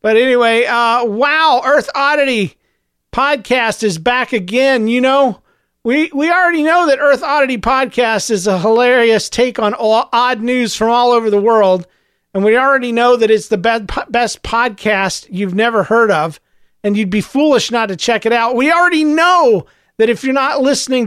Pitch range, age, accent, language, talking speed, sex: 215-265 Hz, 40-59, American, English, 180 wpm, male